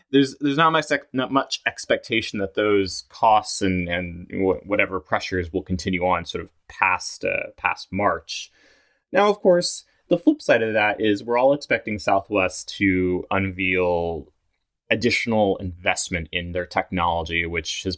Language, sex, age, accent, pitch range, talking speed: English, male, 20-39, American, 90-130 Hz, 150 wpm